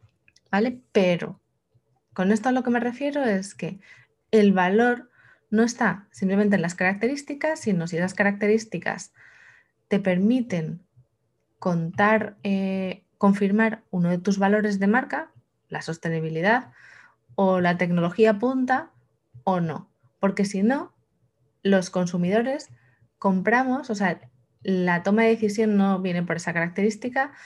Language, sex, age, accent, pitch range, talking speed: Spanish, female, 20-39, Spanish, 180-225 Hz, 130 wpm